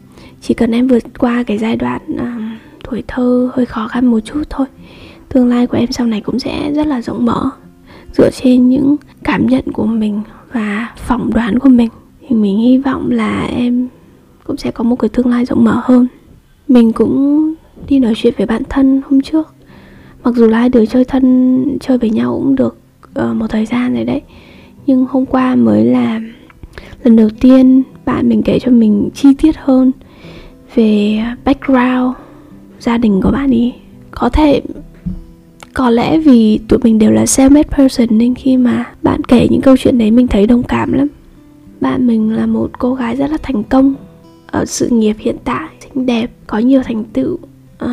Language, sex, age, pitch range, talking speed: Vietnamese, female, 20-39, 230-270 Hz, 195 wpm